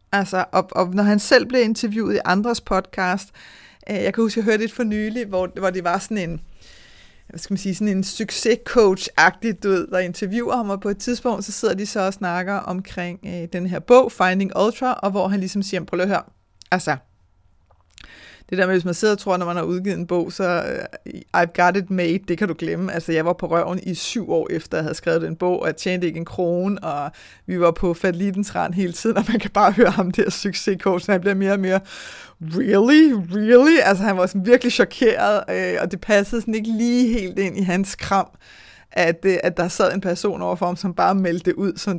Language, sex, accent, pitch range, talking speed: Danish, female, native, 175-210 Hz, 235 wpm